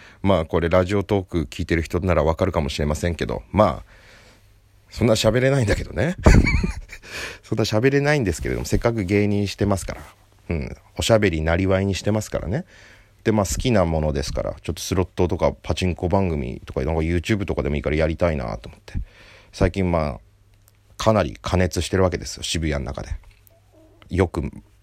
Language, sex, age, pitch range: Japanese, male, 40-59, 85-105 Hz